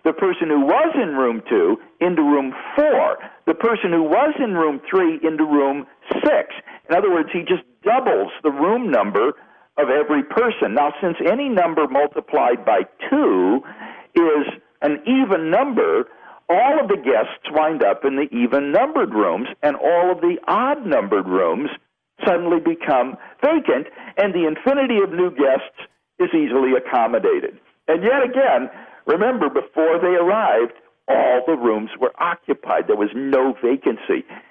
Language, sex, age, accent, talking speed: English, male, 60-79, American, 155 wpm